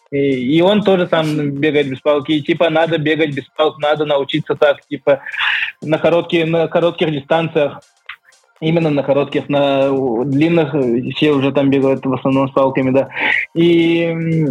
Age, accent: 20-39, native